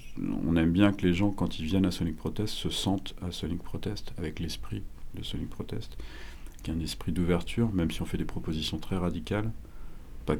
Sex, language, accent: male, French, French